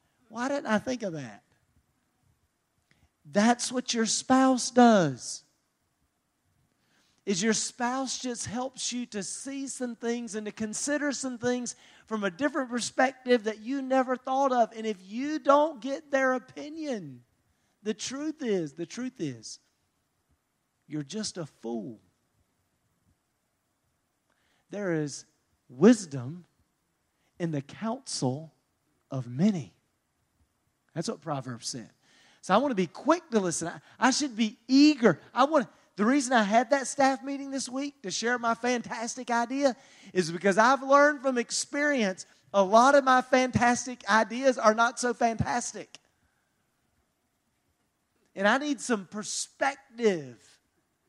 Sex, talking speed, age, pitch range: male, 135 wpm, 40-59, 195-265 Hz